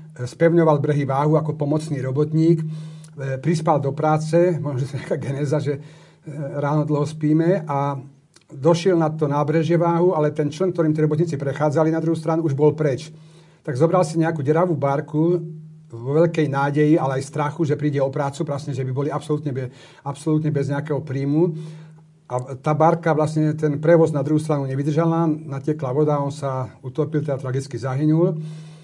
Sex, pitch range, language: male, 145-160 Hz, Slovak